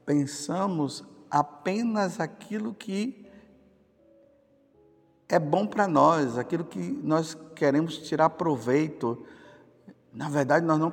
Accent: Brazilian